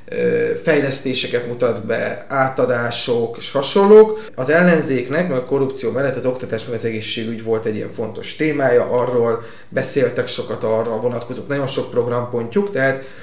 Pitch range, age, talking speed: 120-160 Hz, 30-49, 135 wpm